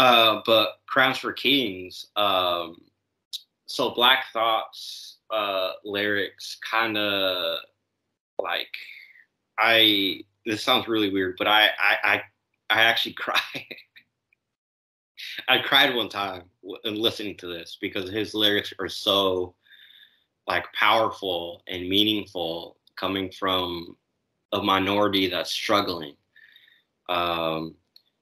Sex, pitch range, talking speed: male, 90-105 Hz, 105 wpm